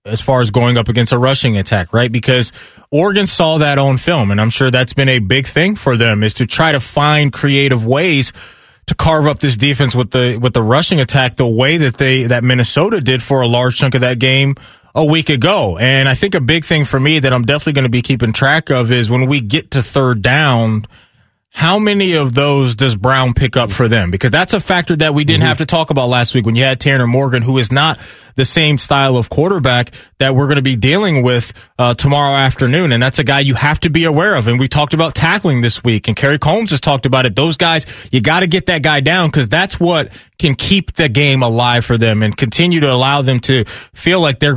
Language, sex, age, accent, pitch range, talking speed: English, male, 20-39, American, 125-150 Hz, 245 wpm